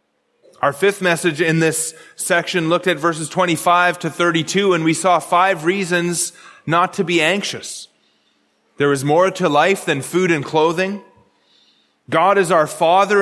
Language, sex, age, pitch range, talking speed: English, male, 30-49, 145-195 Hz, 155 wpm